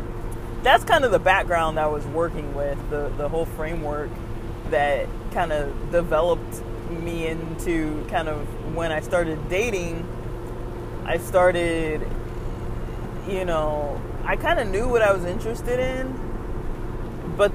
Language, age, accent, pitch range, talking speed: English, 20-39, American, 120-170 Hz, 135 wpm